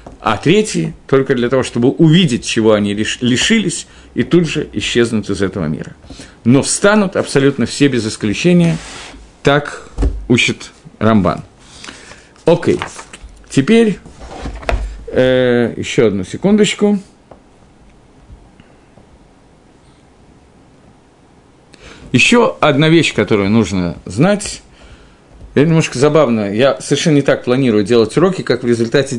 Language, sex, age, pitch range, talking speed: Russian, male, 50-69, 115-160 Hz, 110 wpm